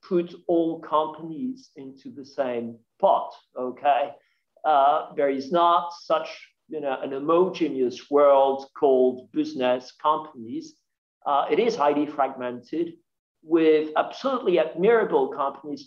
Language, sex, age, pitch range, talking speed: English, male, 50-69, 140-175 Hz, 115 wpm